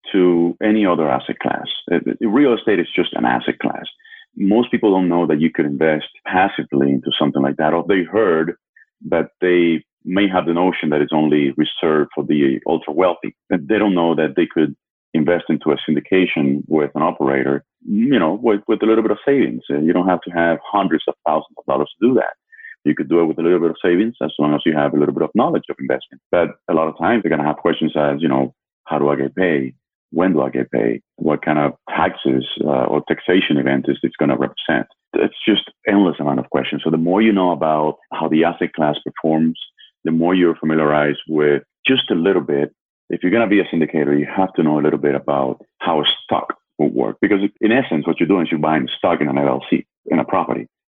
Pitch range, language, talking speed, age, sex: 75-90 Hz, English, 235 wpm, 30-49, male